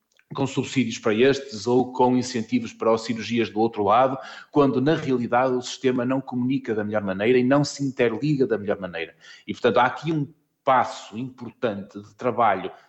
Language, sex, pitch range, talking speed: Portuguese, male, 110-140 Hz, 180 wpm